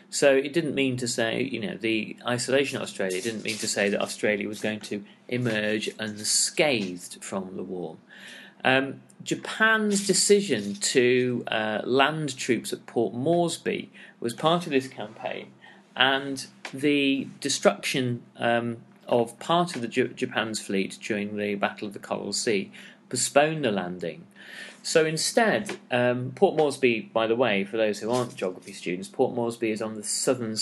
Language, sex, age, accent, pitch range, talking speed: English, male, 40-59, British, 100-135 Hz, 155 wpm